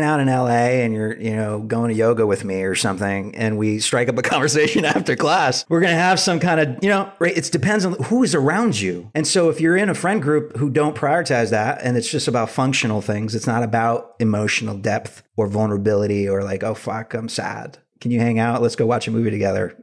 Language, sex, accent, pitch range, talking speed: English, male, American, 115-155 Hz, 240 wpm